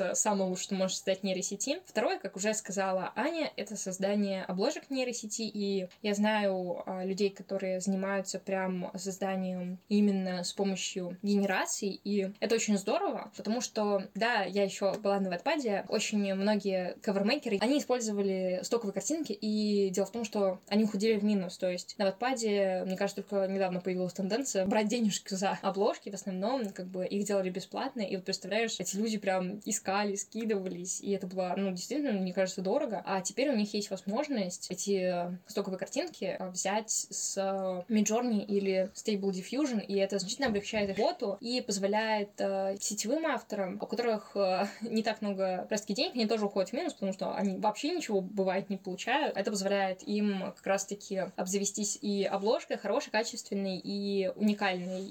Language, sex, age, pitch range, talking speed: Russian, female, 20-39, 190-215 Hz, 165 wpm